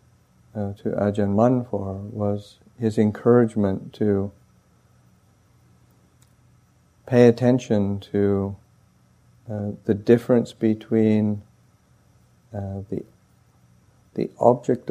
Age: 60-79